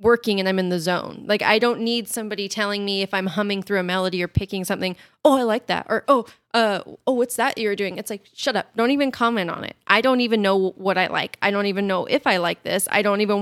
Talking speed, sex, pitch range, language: 275 wpm, female, 190-230 Hz, English